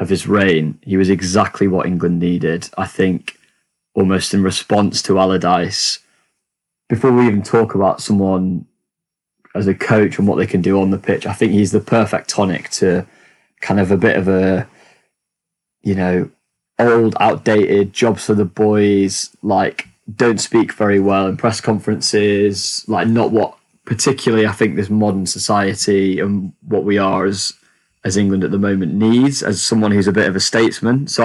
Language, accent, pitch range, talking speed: English, British, 95-110 Hz, 175 wpm